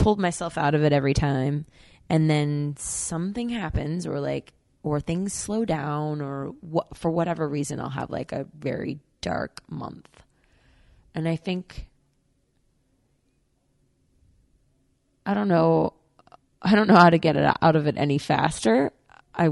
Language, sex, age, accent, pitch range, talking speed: English, female, 20-39, American, 130-165 Hz, 150 wpm